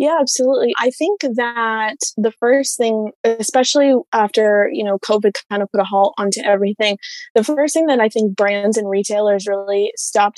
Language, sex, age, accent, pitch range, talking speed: English, female, 20-39, American, 200-225 Hz, 180 wpm